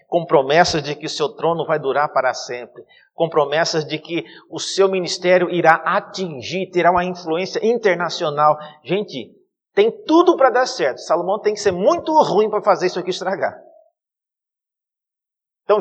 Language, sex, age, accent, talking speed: Portuguese, male, 50-69, Brazilian, 160 wpm